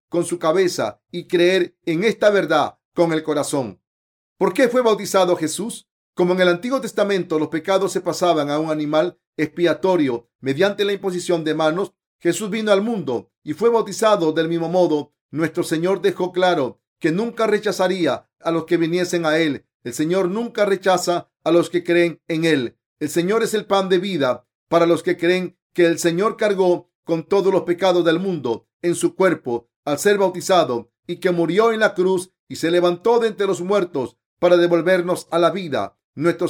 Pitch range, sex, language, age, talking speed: 160-185 Hz, male, Spanish, 40-59, 185 wpm